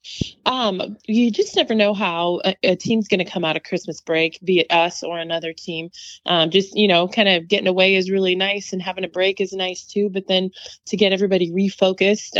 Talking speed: 225 wpm